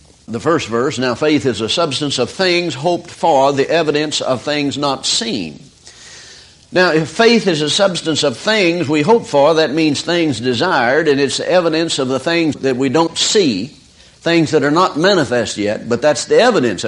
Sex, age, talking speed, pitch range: male, 60-79, 190 wpm, 150-205 Hz